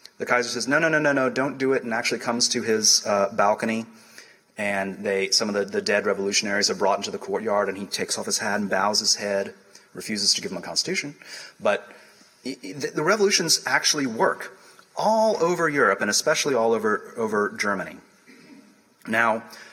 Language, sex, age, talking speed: English, male, 30-49, 190 wpm